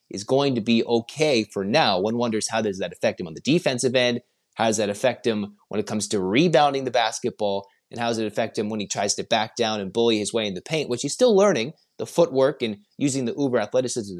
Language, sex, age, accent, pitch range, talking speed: English, male, 30-49, American, 110-145 Hz, 250 wpm